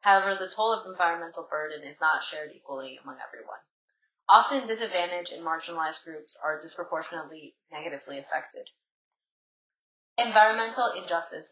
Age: 20-39